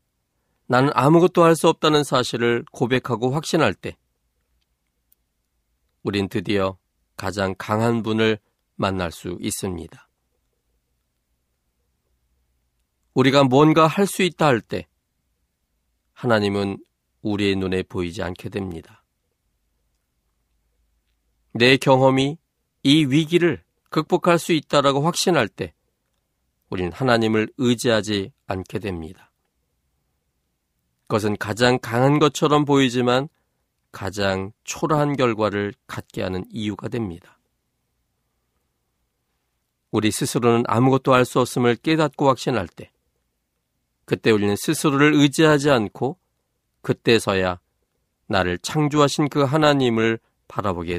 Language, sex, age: Korean, male, 40-59